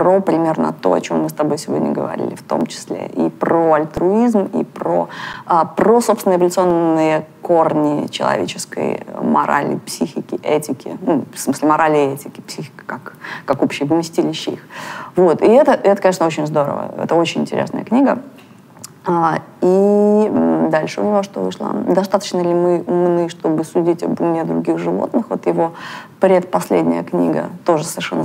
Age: 20-39